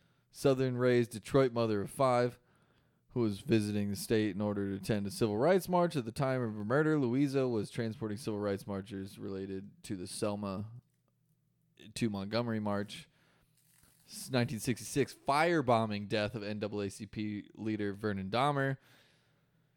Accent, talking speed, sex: American, 135 wpm, male